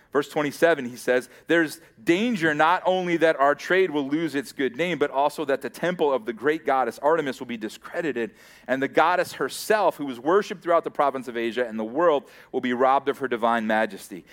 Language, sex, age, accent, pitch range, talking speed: English, male, 30-49, American, 135-170 Hz, 215 wpm